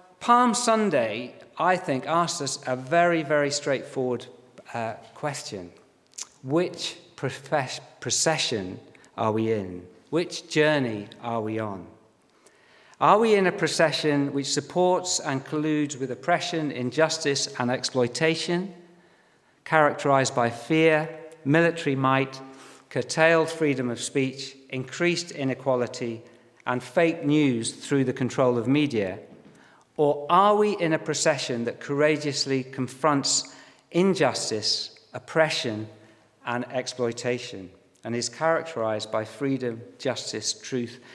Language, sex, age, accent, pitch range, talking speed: English, male, 50-69, British, 120-155 Hz, 110 wpm